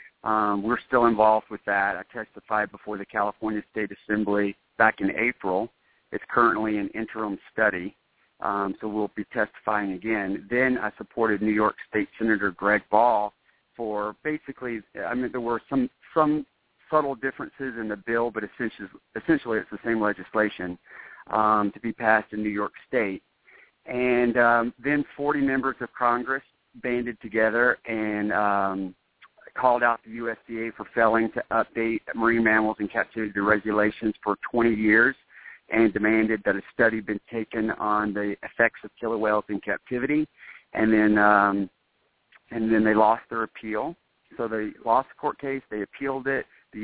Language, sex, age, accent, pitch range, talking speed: English, male, 50-69, American, 105-115 Hz, 160 wpm